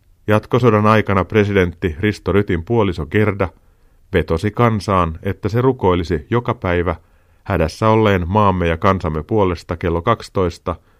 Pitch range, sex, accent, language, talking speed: 85-105 Hz, male, native, Finnish, 120 wpm